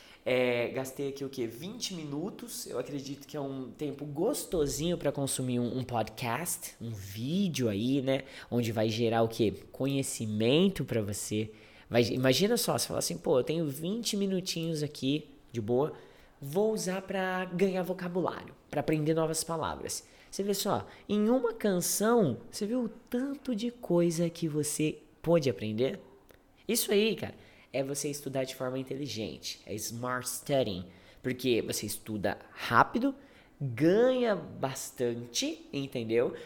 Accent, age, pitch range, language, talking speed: Brazilian, 20-39, 120-175 Hz, English, 145 wpm